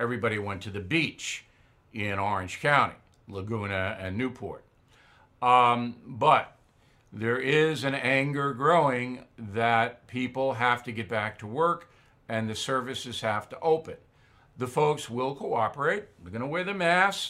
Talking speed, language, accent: 150 wpm, English, American